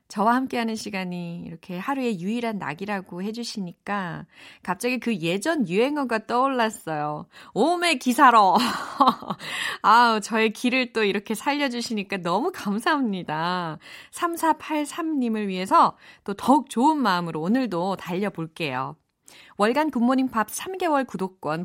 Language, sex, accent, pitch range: Korean, female, native, 175-280 Hz